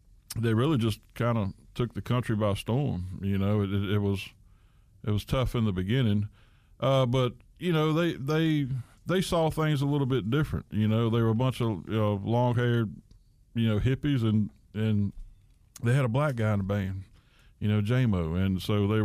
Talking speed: 200 wpm